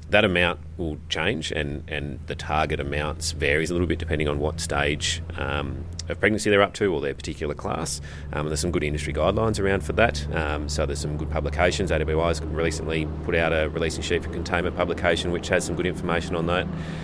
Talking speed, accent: 210 wpm, Australian